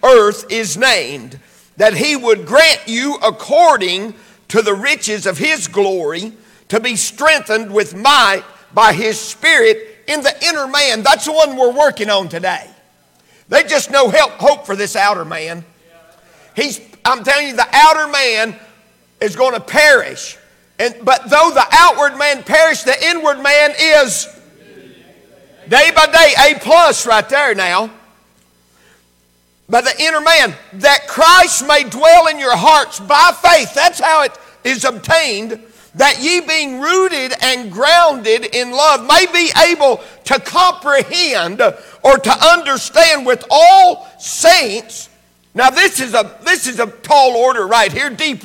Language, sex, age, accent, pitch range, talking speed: English, male, 50-69, American, 220-310 Hz, 150 wpm